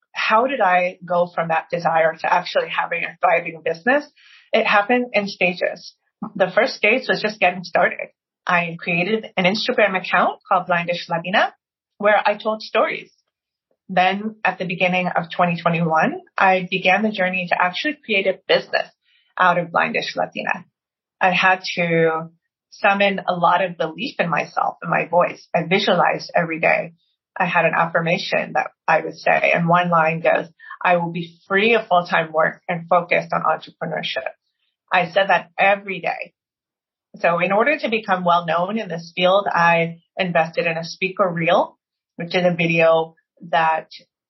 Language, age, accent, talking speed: English, 30-49, American, 165 wpm